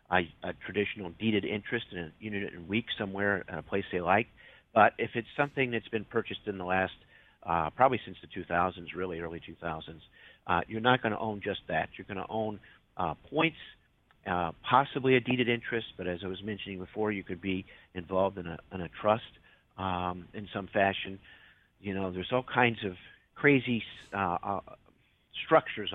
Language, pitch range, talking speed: English, 95-115 Hz, 190 wpm